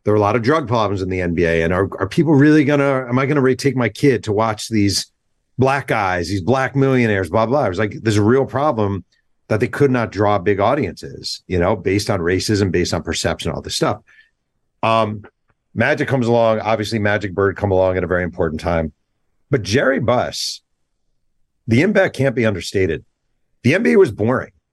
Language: English